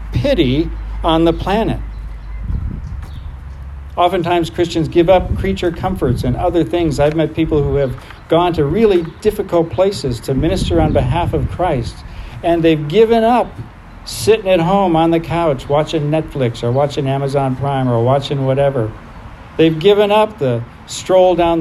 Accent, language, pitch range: American, English, 130-180 Hz